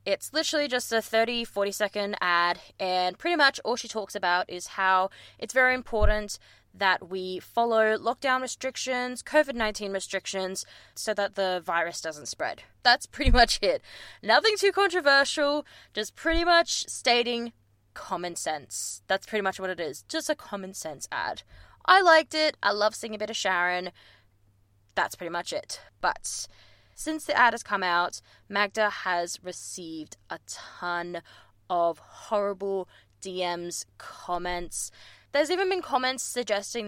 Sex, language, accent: female, English, Australian